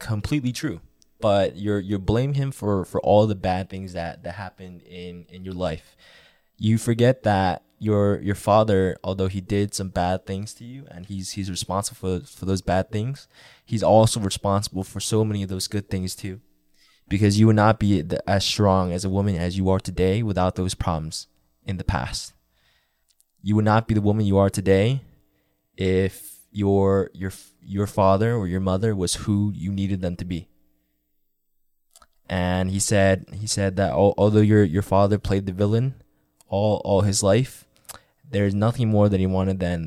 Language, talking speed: English, 185 wpm